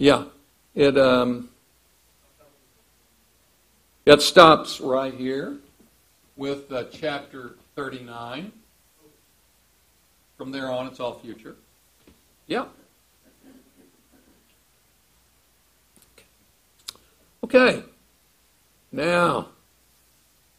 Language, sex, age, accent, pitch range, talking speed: English, male, 60-79, American, 105-130 Hz, 60 wpm